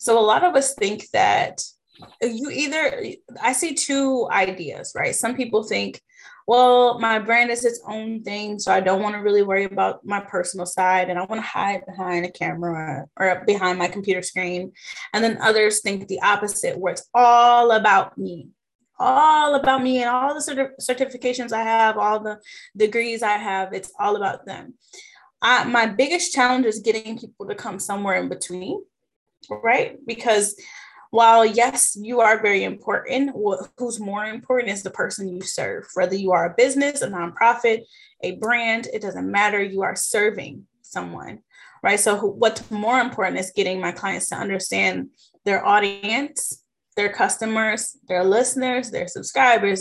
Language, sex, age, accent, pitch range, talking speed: English, female, 10-29, American, 200-250 Hz, 165 wpm